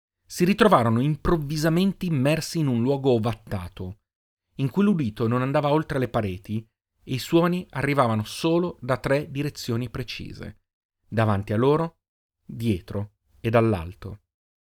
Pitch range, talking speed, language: 105-150 Hz, 125 wpm, Italian